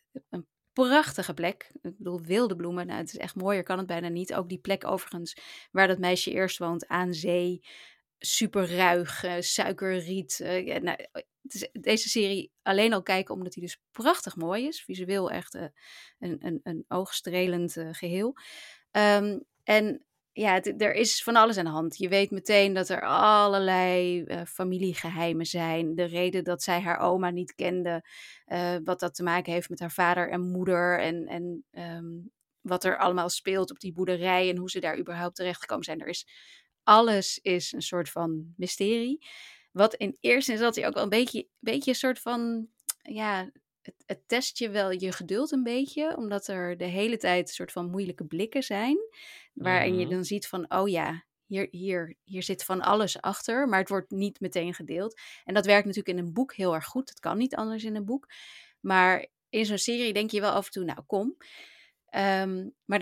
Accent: Dutch